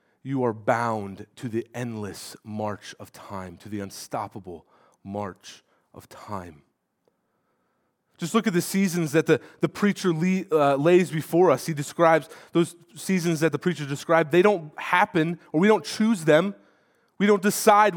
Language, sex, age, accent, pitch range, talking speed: English, male, 30-49, American, 105-170 Hz, 155 wpm